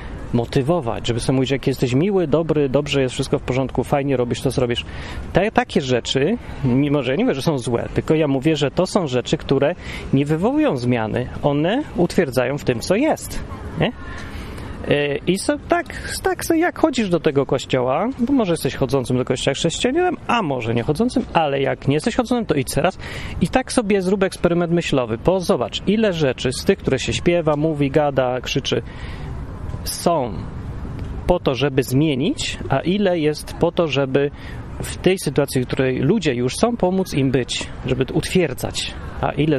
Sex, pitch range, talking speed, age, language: male, 130-180 Hz, 180 wpm, 30-49, Polish